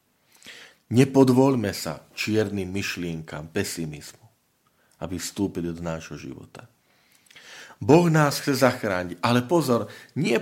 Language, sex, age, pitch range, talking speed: Slovak, male, 40-59, 85-115 Hz, 100 wpm